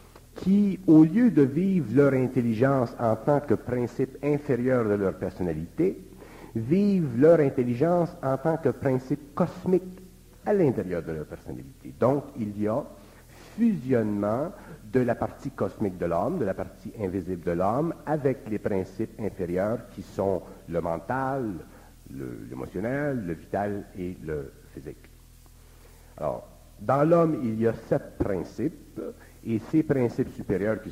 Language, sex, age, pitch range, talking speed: French, male, 60-79, 100-140 Hz, 140 wpm